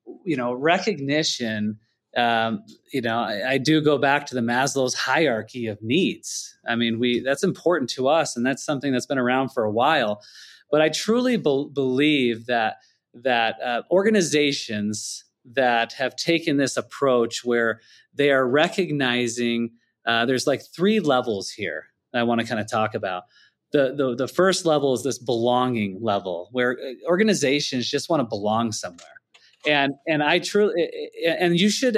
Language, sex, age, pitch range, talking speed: English, male, 30-49, 120-175 Hz, 160 wpm